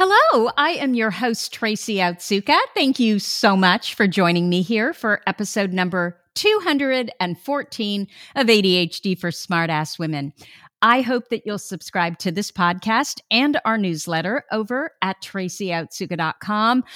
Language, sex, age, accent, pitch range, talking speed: English, female, 50-69, American, 175-230 Hz, 140 wpm